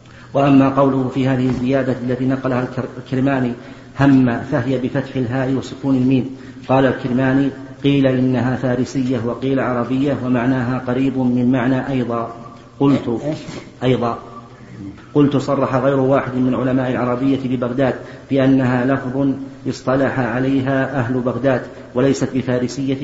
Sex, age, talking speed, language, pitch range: male, 40-59, 115 wpm, Arabic, 125-130 Hz